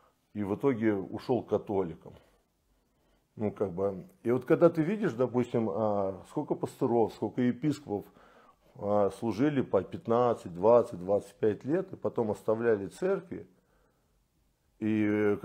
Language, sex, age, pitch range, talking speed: Russian, male, 50-69, 100-150 Hz, 115 wpm